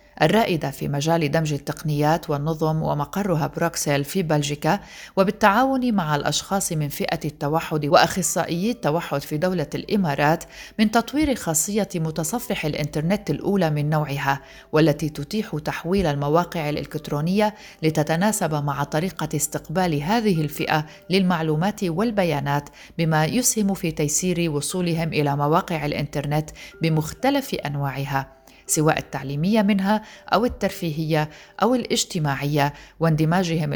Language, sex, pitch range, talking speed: Arabic, female, 150-190 Hz, 105 wpm